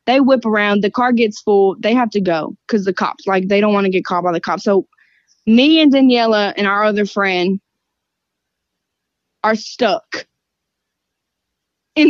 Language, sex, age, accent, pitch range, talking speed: English, female, 20-39, American, 190-235 Hz, 175 wpm